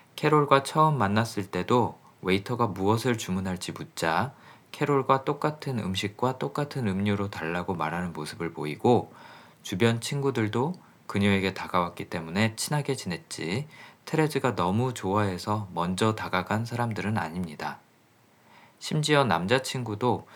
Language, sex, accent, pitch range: Korean, male, native, 95-120 Hz